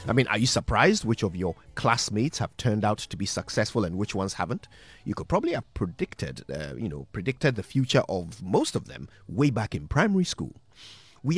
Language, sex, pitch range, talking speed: English, male, 95-125 Hz, 210 wpm